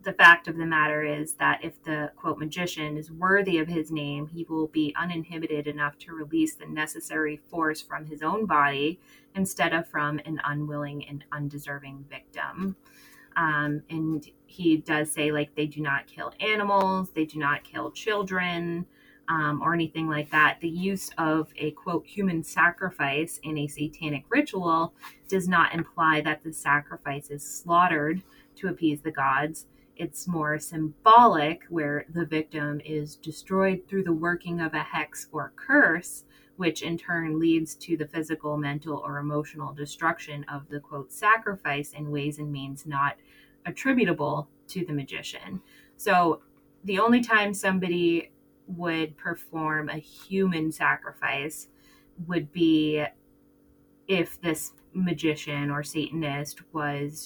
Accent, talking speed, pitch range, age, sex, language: American, 145 wpm, 150-170 Hz, 20-39, female, English